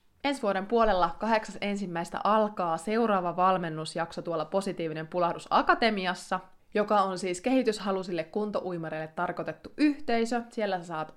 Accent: native